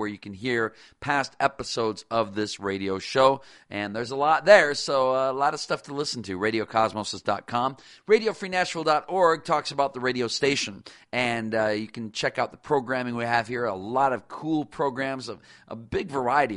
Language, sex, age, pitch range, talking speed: English, male, 40-59, 105-140 Hz, 180 wpm